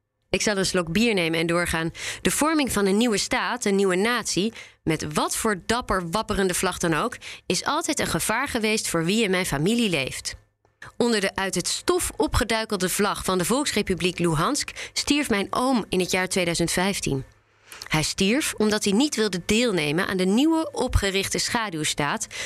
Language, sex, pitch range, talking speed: Dutch, female, 150-210 Hz, 175 wpm